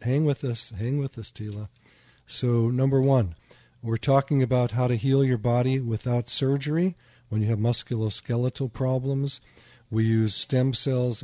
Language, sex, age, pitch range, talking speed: English, male, 50-69, 110-125 Hz, 155 wpm